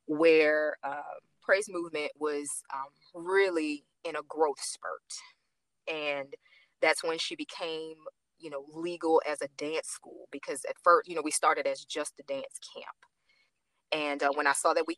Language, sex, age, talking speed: English, female, 20-39, 170 wpm